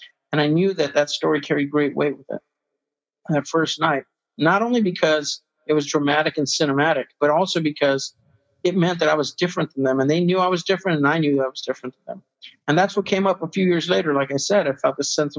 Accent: American